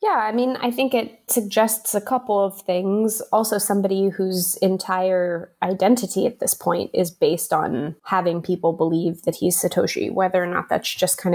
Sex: female